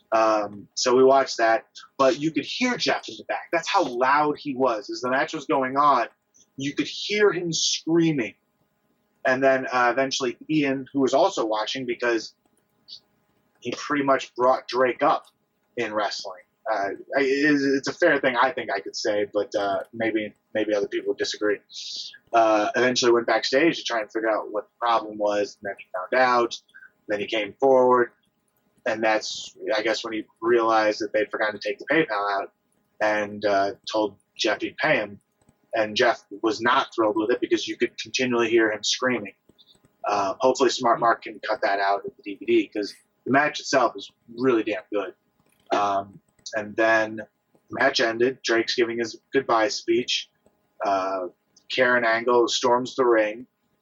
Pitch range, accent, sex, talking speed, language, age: 110-140 Hz, American, male, 175 wpm, English, 30-49